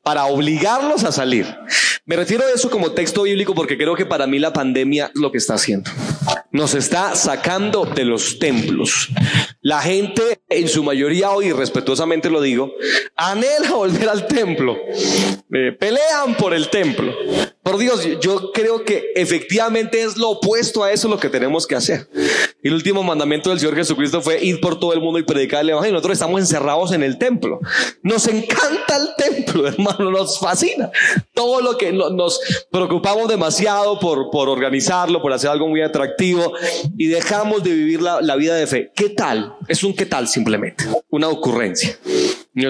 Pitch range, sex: 150-205 Hz, male